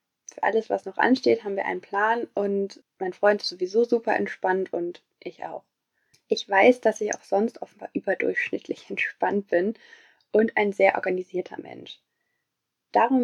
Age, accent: 20-39, German